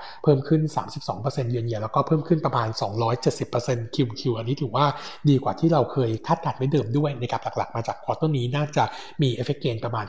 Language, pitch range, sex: Thai, 120-155 Hz, male